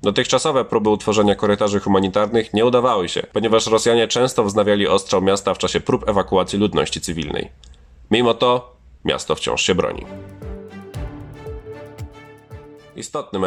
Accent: native